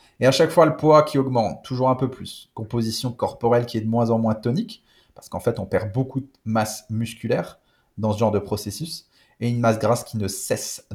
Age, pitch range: 30-49, 110-130 Hz